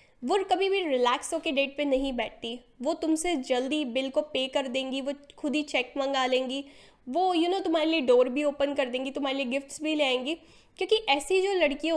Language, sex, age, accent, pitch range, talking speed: Hindi, female, 10-29, native, 270-340 Hz, 220 wpm